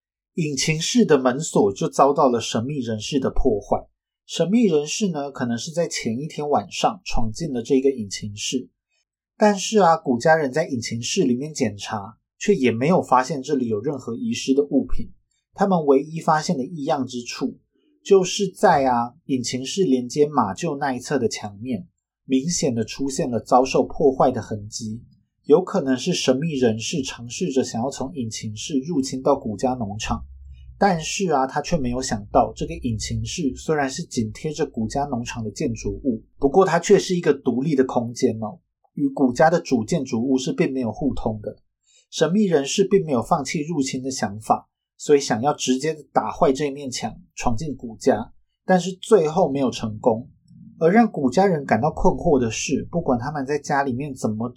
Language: Chinese